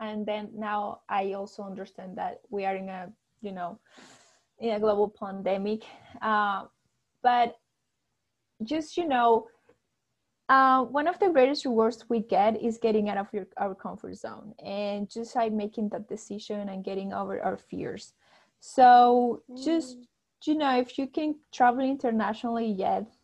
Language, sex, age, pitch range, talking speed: English, female, 20-39, 205-245 Hz, 150 wpm